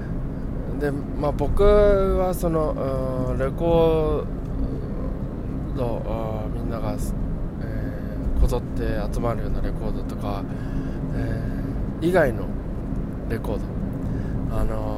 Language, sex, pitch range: Japanese, male, 110-140 Hz